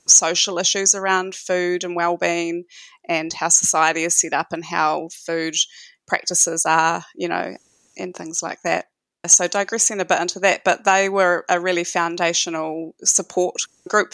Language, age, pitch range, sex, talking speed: English, 20-39, 170-190 Hz, female, 155 wpm